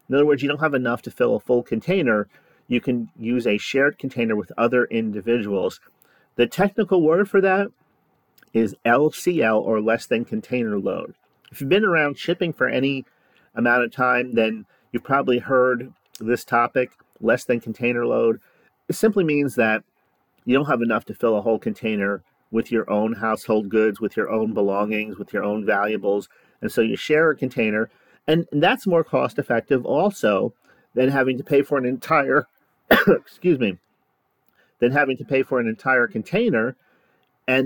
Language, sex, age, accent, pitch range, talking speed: English, male, 40-59, American, 115-145 Hz, 175 wpm